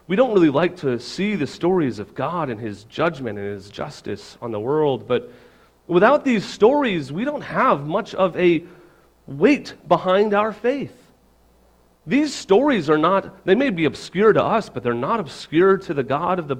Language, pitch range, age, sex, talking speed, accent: English, 135-205 Hz, 40-59, male, 190 wpm, American